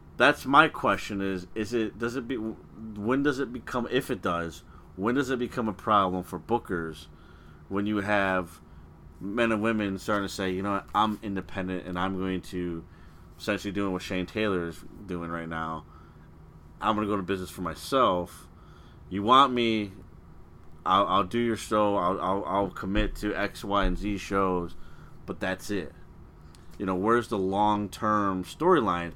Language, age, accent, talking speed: English, 30-49, American, 175 wpm